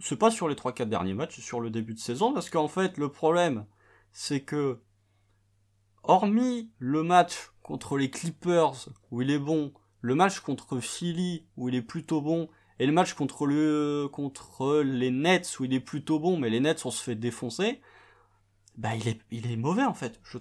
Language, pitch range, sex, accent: French, 110-160 Hz, male, French